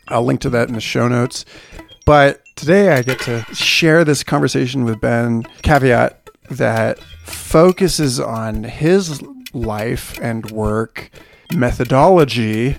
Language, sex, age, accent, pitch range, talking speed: English, male, 40-59, American, 110-140 Hz, 125 wpm